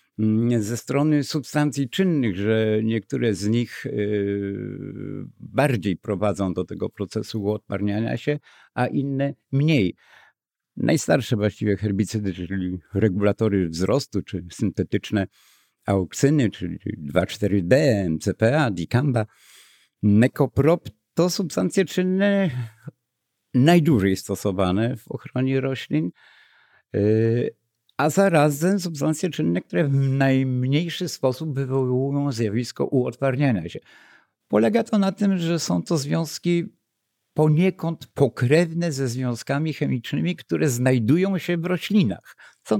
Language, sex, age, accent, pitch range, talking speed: Polish, male, 60-79, native, 105-155 Hz, 100 wpm